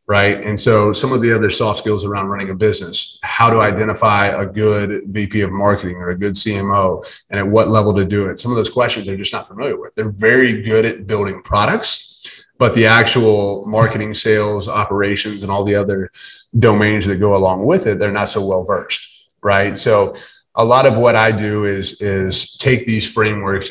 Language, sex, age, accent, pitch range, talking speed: English, male, 30-49, American, 95-110 Hz, 205 wpm